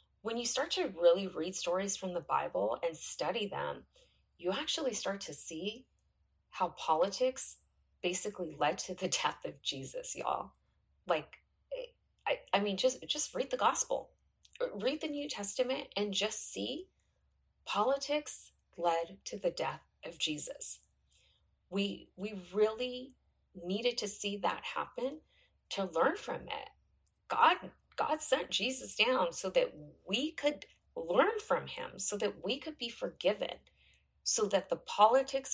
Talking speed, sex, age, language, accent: 145 wpm, female, 30-49, English, American